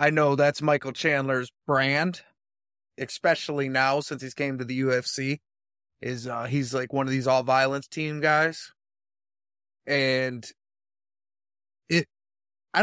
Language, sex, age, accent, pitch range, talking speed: English, male, 20-39, American, 120-155 Hz, 120 wpm